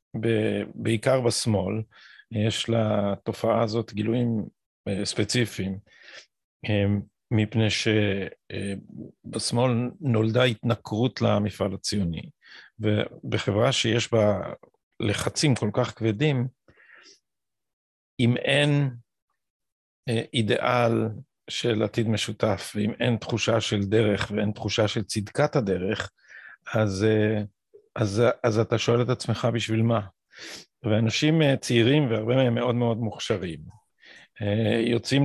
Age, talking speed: 50-69, 90 wpm